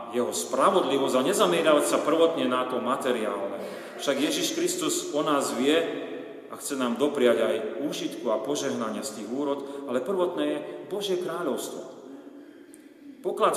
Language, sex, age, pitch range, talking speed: Slovak, male, 40-59, 130-205 Hz, 140 wpm